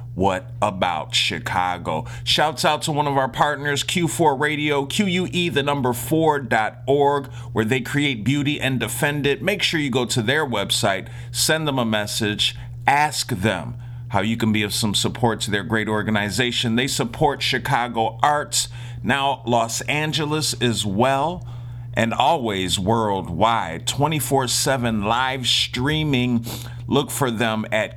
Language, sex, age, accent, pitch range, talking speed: English, male, 40-59, American, 115-140 Hz, 135 wpm